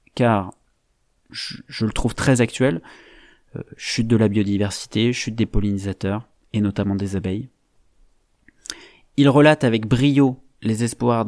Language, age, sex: French, 30-49, male